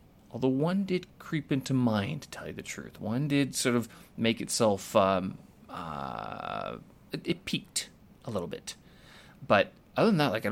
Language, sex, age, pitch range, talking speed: English, male, 30-49, 100-125 Hz, 175 wpm